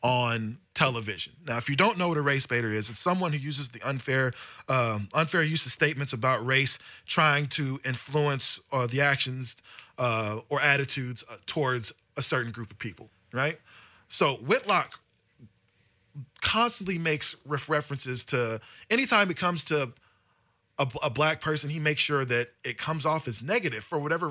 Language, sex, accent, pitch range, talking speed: English, male, American, 125-160 Hz, 165 wpm